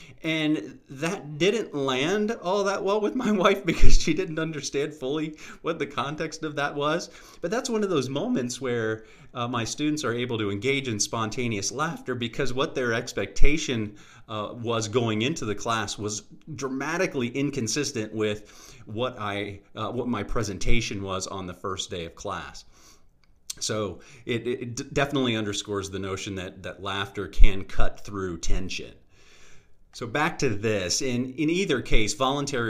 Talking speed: 160 wpm